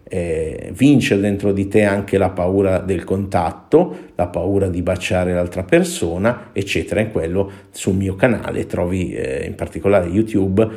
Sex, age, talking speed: male, 50-69, 150 wpm